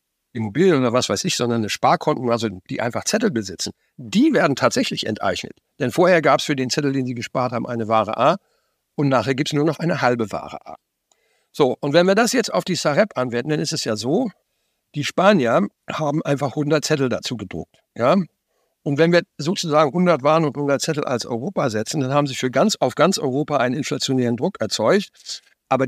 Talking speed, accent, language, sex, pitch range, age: 205 wpm, German, German, male, 125-165 Hz, 60-79